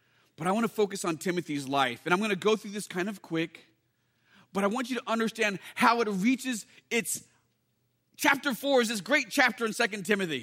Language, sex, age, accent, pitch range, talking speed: English, male, 40-59, American, 180-245 Hz, 215 wpm